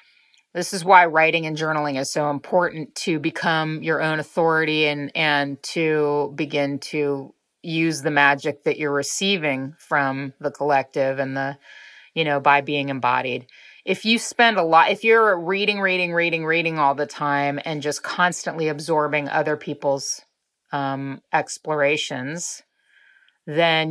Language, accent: English, American